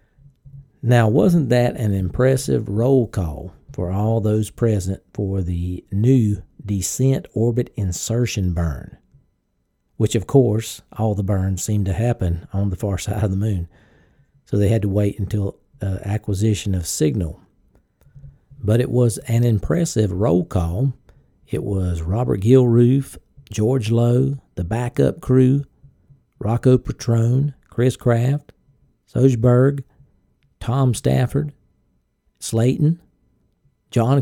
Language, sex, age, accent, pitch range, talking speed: English, male, 50-69, American, 100-130 Hz, 120 wpm